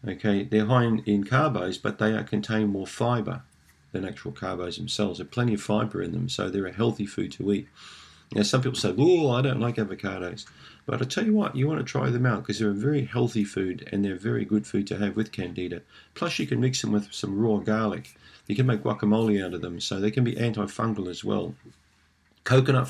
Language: English